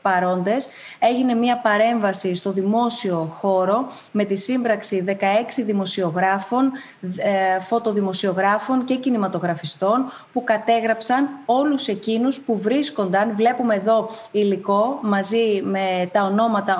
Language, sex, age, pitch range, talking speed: Greek, female, 20-39, 195-240 Hz, 100 wpm